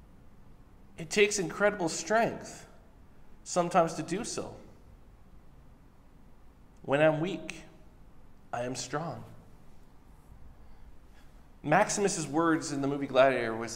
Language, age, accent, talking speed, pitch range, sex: English, 40-59, American, 90 wpm, 105-145 Hz, male